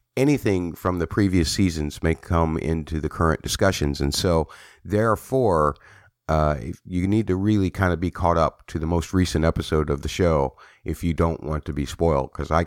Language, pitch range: English, 75-95 Hz